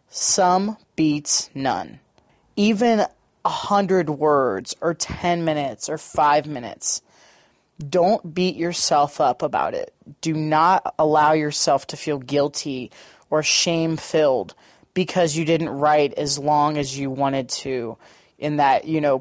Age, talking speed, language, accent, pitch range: 30-49, 130 wpm, English, American, 150-185 Hz